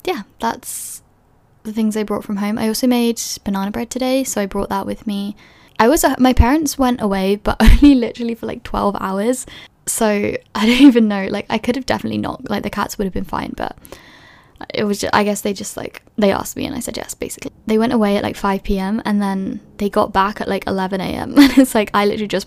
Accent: British